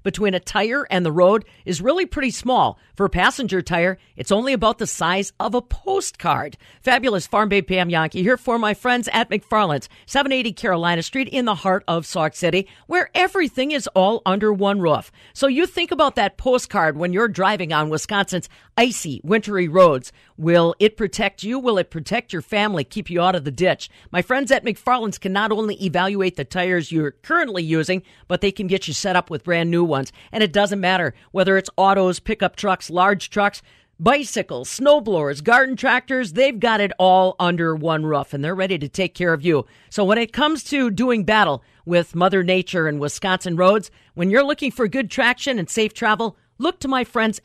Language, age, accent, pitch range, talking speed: English, 50-69, American, 175-235 Hz, 200 wpm